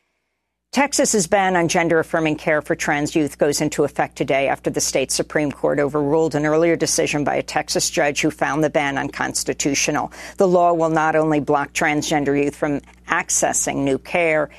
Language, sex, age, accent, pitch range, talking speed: English, female, 50-69, American, 150-180 Hz, 175 wpm